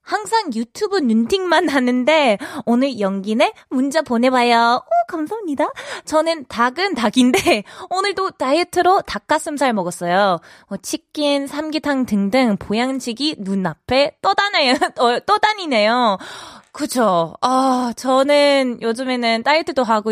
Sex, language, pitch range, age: female, Korean, 230-350 Hz, 20-39